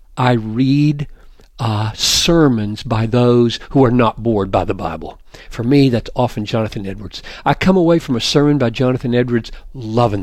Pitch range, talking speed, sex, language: 110-140 Hz, 170 wpm, male, English